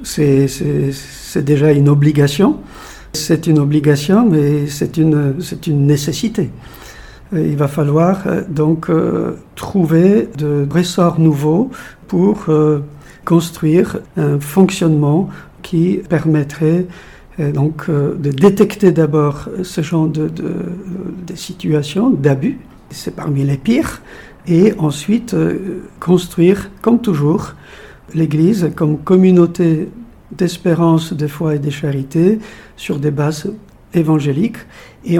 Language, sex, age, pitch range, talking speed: French, male, 50-69, 150-185 Hz, 110 wpm